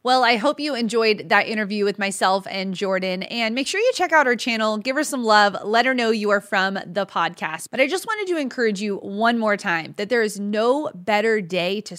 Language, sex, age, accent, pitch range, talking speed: English, female, 20-39, American, 195-245 Hz, 240 wpm